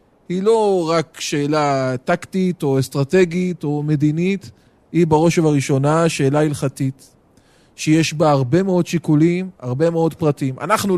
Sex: male